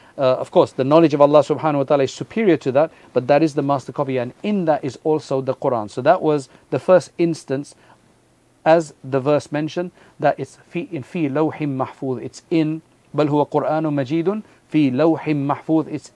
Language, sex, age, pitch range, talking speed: English, male, 40-59, 130-155 Hz, 165 wpm